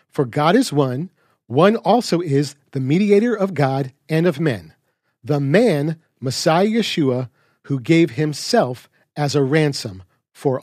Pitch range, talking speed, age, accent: 135-180 Hz, 140 wpm, 40-59, American